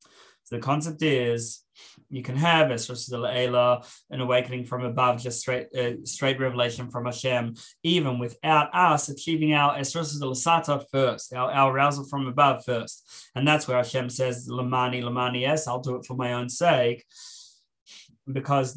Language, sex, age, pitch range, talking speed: English, male, 20-39, 125-155 Hz, 155 wpm